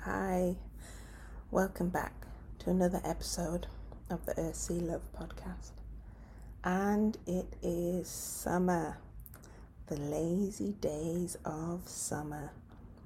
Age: 30-49